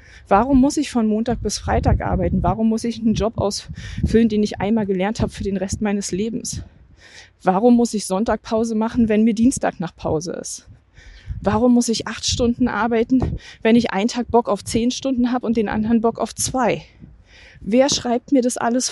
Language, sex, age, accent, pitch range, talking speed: German, female, 20-39, German, 200-245 Hz, 195 wpm